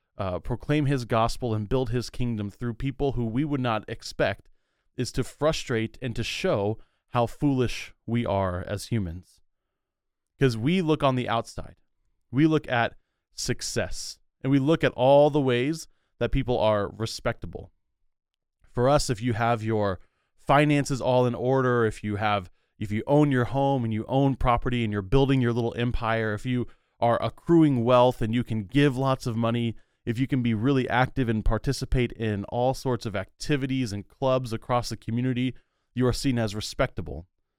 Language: English